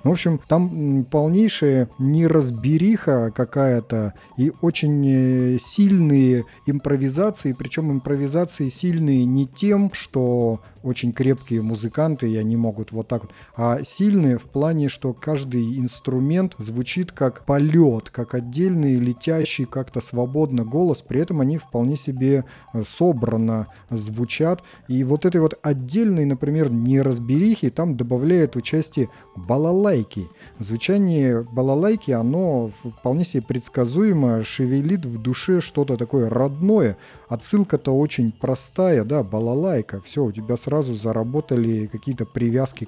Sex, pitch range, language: male, 120-155 Hz, Russian